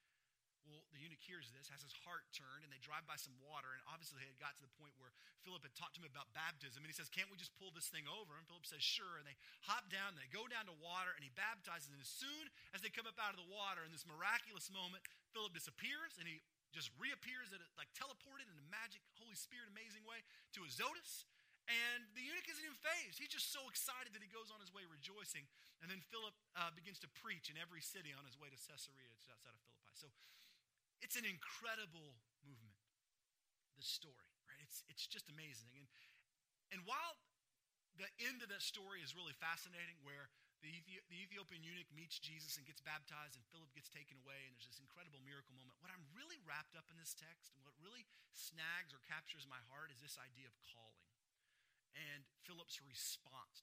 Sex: male